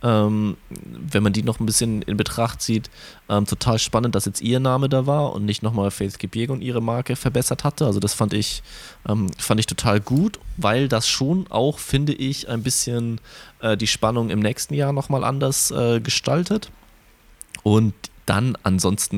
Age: 20-39